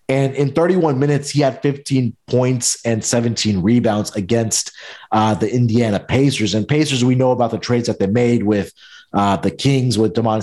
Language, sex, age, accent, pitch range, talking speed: English, male, 30-49, American, 110-140 Hz, 185 wpm